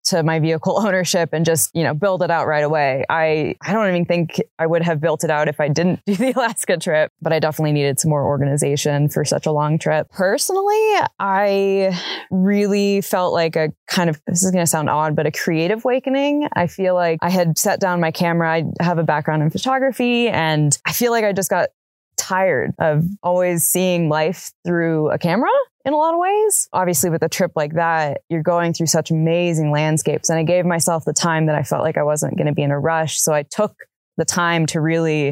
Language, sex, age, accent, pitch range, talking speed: English, female, 20-39, American, 155-190 Hz, 225 wpm